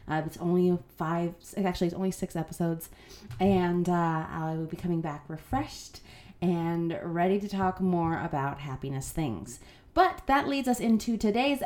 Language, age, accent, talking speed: English, 30-49, American, 160 wpm